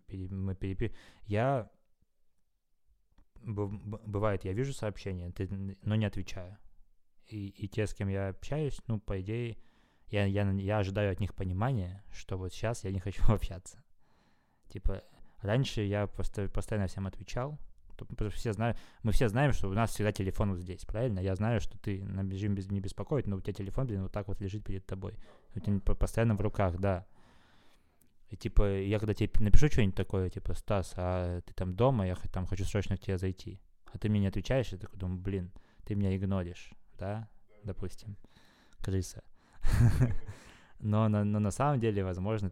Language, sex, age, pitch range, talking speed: Russian, male, 20-39, 95-105 Hz, 170 wpm